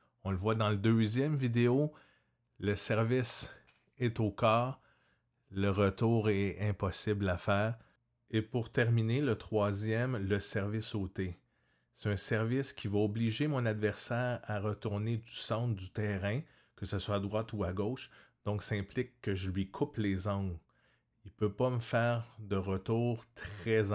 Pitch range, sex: 100-120 Hz, male